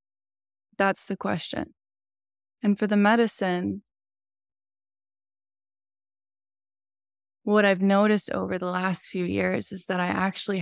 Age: 20-39